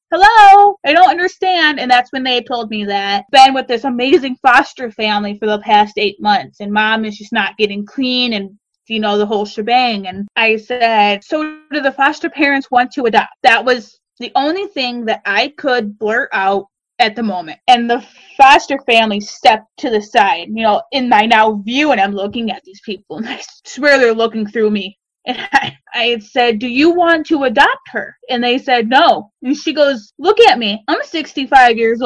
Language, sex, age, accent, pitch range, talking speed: English, female, 20-39, American, 210-275 Hz, 205 wpm